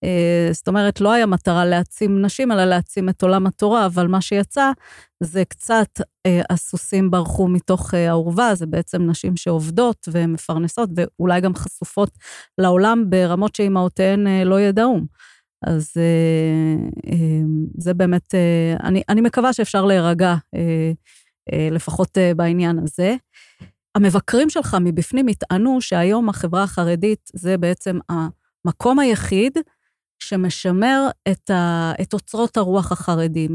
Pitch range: 170-205 Hz